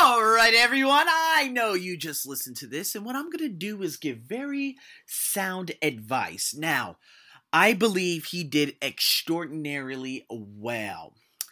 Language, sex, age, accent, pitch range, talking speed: English, male, 30-49, American, 135-185 Hz, 140 wpm